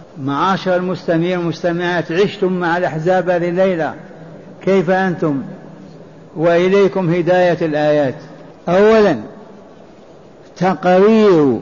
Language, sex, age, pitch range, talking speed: Arabic, male, 60-79, 175-205 Hz, 75 wpm